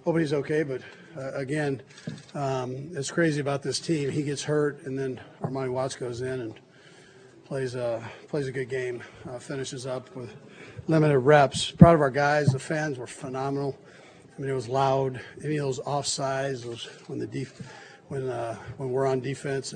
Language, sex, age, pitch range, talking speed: English, male, 40-59, 130-145 Hz, 190 wpm